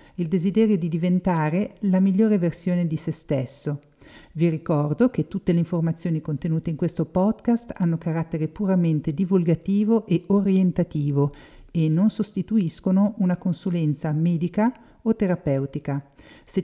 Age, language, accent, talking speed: 50-69, Italian, native, 125 wpm